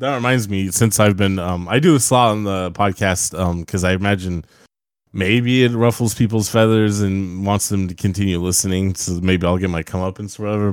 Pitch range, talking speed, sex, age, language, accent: 95-115 Hz, 215 wpm, male, 20-39, English, American